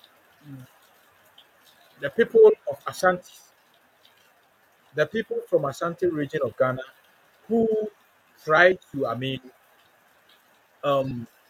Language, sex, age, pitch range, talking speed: English, male, 50-69, 145-210 Hz, 90 wpm